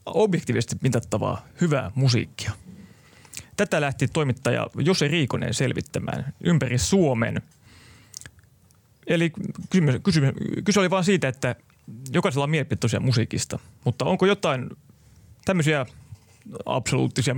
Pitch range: 120-150 Hz